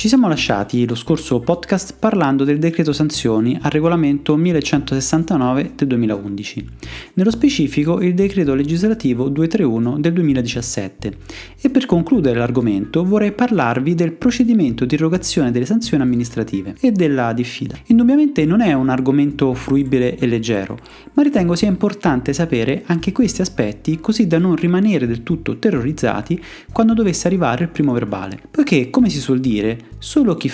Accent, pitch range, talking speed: native, 125-195 Hz, 145 wpm